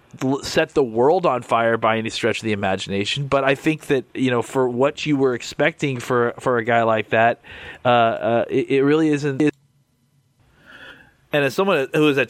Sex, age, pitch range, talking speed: male, 30-49, 115-135 Hz, 195 wpm